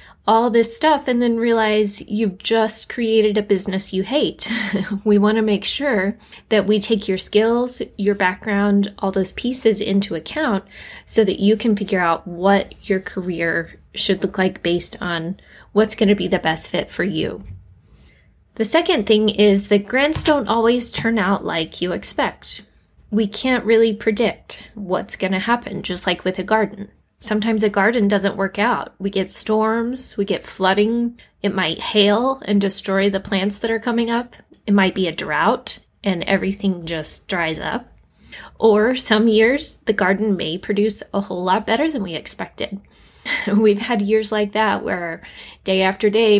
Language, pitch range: English, 190-220 Hz